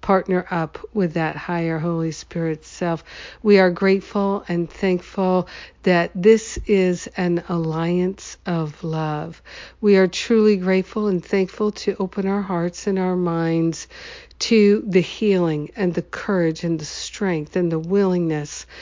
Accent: American